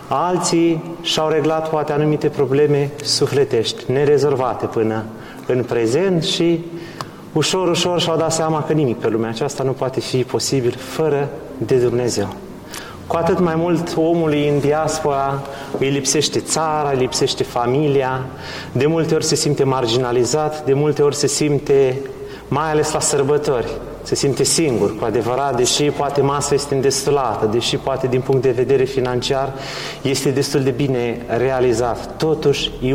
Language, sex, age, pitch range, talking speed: Romanian, male, 30-49, 130-155 Hz, 150 wpm